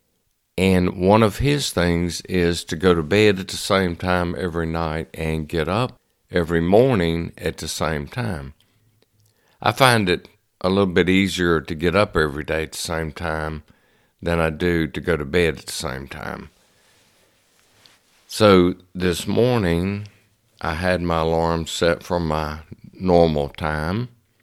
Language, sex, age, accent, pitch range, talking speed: English, male, 60-79, American, 80-100 Hz, 155 wpm